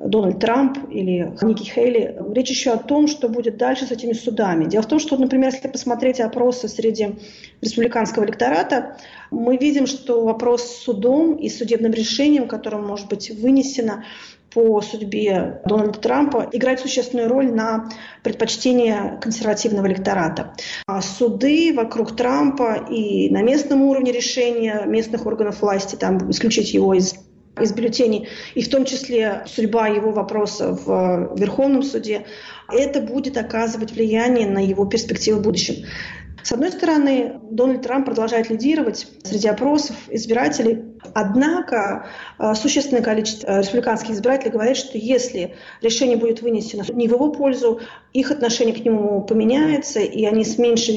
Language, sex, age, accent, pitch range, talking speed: Russian, female, 30-49, native, 215-255 Hz, 140 wpm